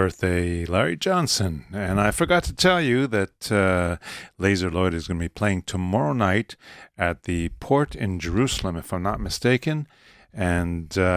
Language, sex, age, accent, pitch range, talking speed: English, male, 50-69, American, 85-105 Hz, 160 wpm